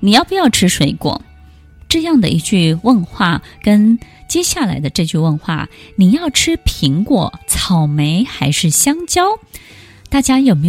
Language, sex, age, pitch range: Chinese, female, 20-39, 155-230 Hz